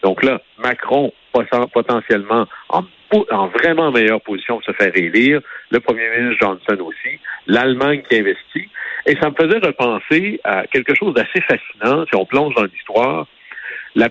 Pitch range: 110-150 Hz